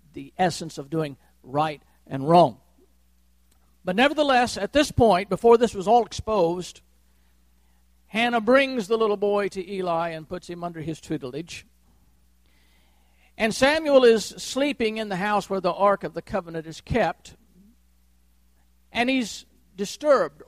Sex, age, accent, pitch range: male, 50-69, American, 135-225 Hz